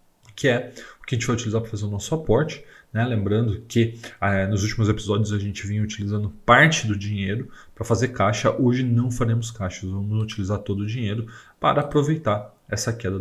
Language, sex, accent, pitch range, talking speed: Portuguese, male, Brazilian, 105-125 Hz, 195 wpm